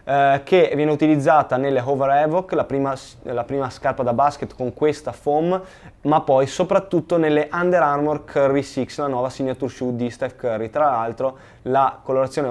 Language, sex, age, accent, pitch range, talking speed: Italian, male, 20-39, native, 135-165 Hz, 170 wpm